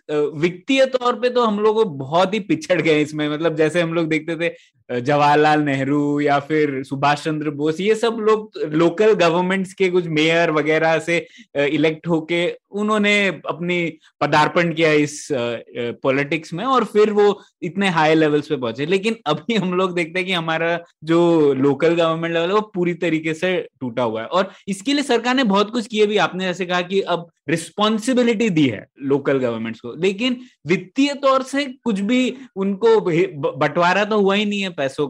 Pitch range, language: 150-200 Hz, Hindi